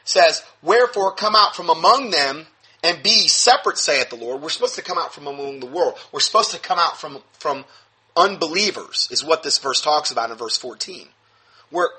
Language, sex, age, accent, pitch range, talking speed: English, male, 30-49, American, 145-235 Hz, 200 wpm